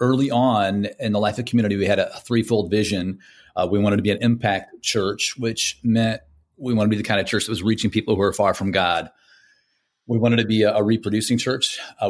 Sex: male